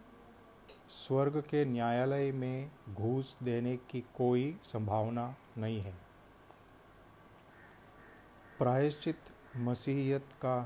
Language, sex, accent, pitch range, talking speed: Hindi, male, native, 115-135 Hz, 80 wpm